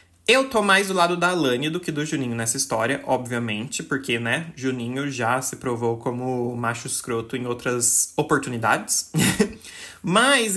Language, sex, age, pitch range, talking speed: Portuguese, male, 20-39, 125-155 Hz, 155 wpm